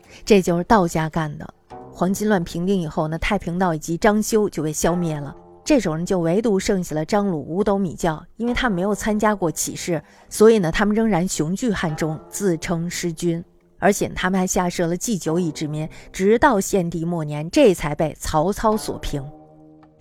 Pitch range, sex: 160-205 Hz, female